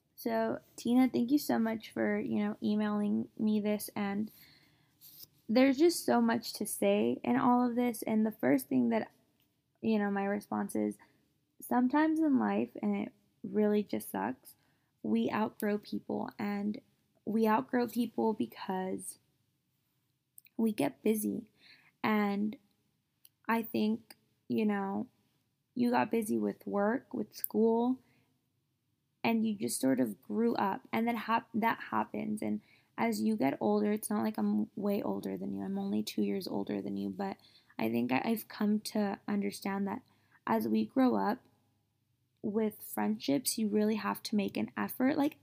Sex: female